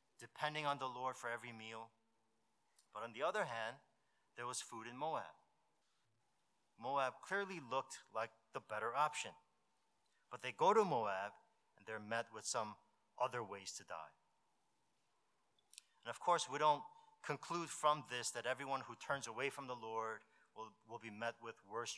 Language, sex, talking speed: English, male, 165 wpm